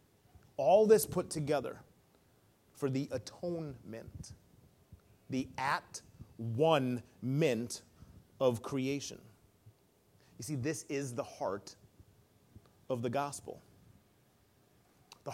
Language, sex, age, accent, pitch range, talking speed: English, male, 30-49, American, 130-180 Hz, 80 wpm